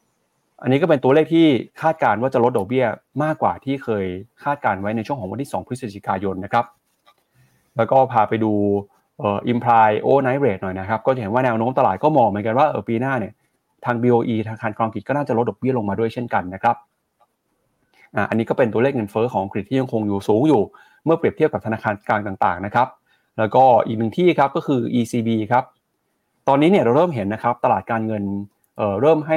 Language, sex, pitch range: Thai, male, 105-130 Hz